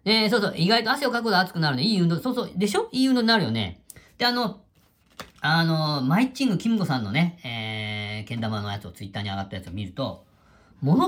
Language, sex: Japanese, female